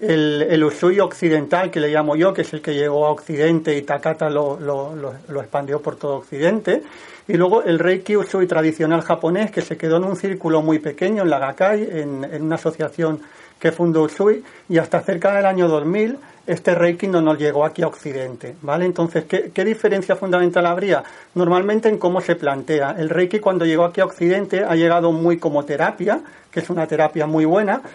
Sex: male